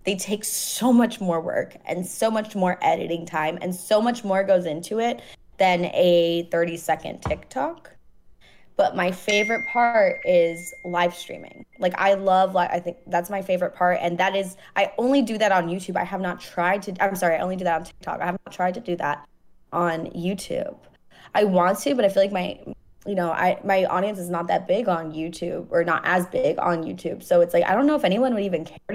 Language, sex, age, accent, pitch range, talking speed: English, female, 20-39, American, 170-195 Hz, 225 wpm